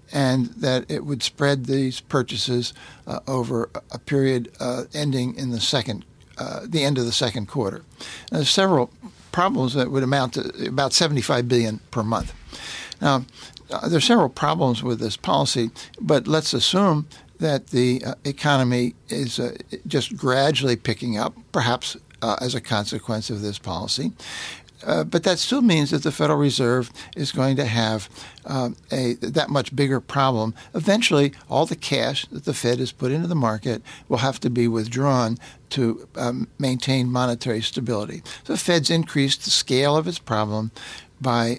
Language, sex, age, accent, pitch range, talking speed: English, male, 60-79, American, 120-145 Hz, 165 wpm